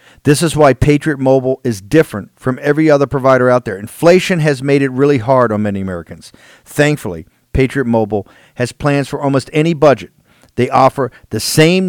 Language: English